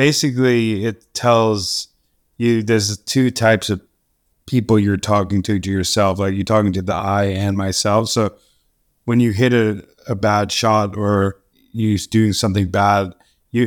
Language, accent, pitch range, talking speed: English, American, 100-110 Hz, 160 wpm